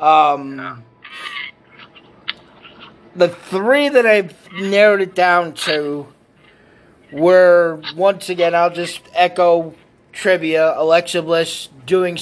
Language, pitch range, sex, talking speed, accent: English, 155-185 Hz, male, 95 wpm, American